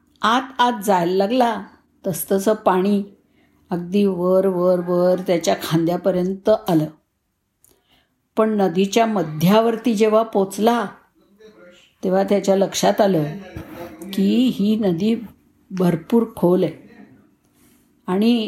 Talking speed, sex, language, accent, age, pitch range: 95 wpm, female, Marathi, native, 50-69, 180-235 Hz